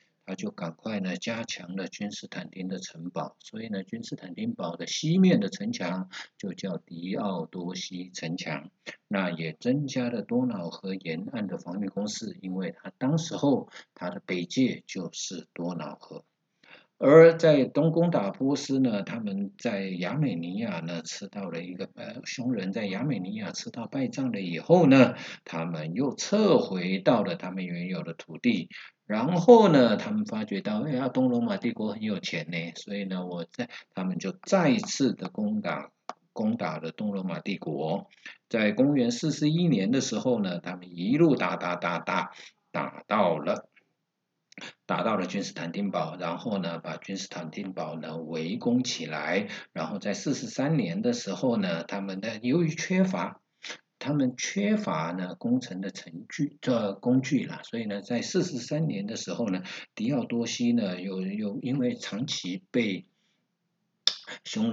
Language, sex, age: Chinese, male, 50-69